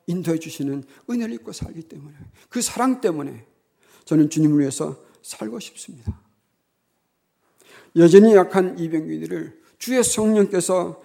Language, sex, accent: Korean, male, native